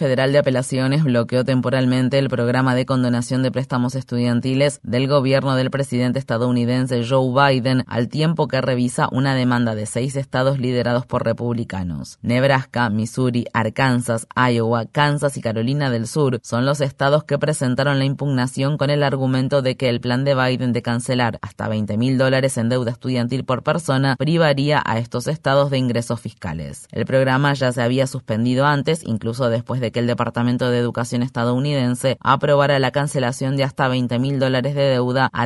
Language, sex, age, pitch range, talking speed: Spanish, female, 20-39, 120-140 Hz, 170 wpm